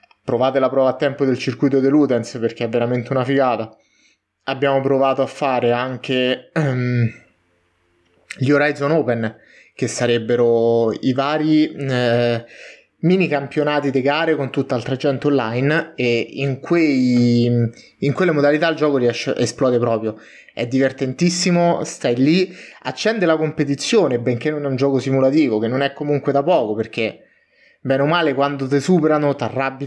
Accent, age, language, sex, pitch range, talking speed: native, 20-39, Italian, male, 120-150 Hz, 150 wpm